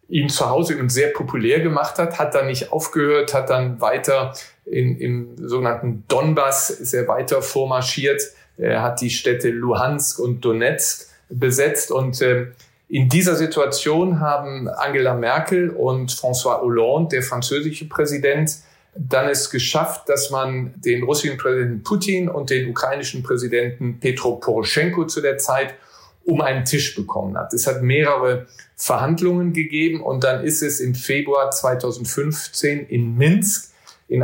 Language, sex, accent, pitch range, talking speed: German, male, German, 125-145 Hz, 145 wpm